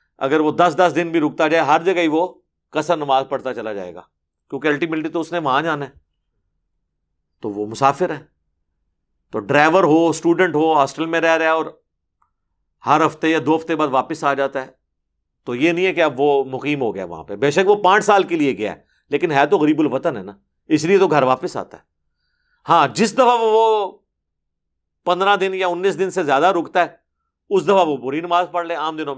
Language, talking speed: Urdu, 220 wpm